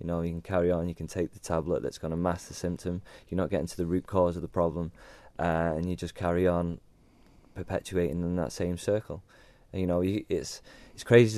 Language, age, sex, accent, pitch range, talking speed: English, 20-39, male, British, 80-90 Hz, 235 wpm